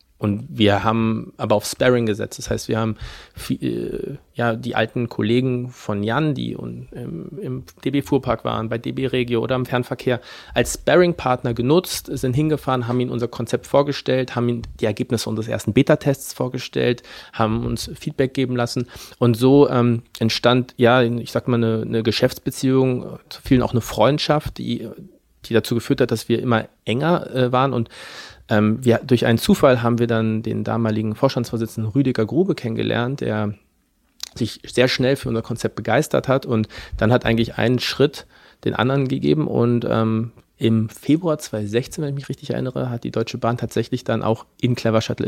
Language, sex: German, male